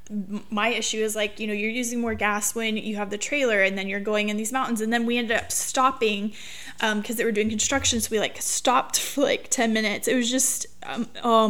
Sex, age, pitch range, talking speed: female, 20-39, 205-230 Hz, 245 wpm